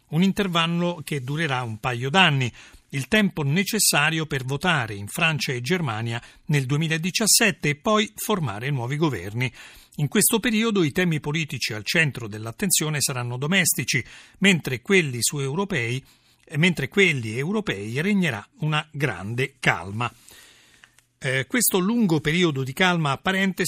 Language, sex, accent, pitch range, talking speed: Italian, male, native, 130-180 Hz, 125 wpm